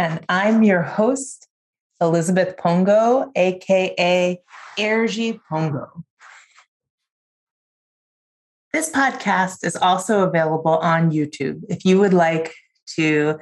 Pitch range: 165-220 Hz